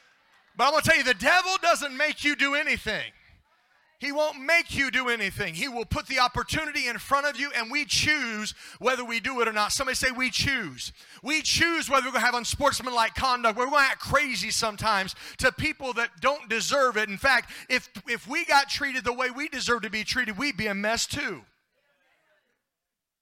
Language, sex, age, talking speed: English, male, 40-59, 210 wpm